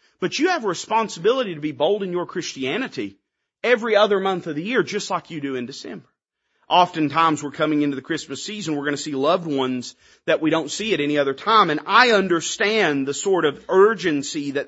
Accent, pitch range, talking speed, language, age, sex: American, 145-205 Hz, 215 wpm, English, 30-49, male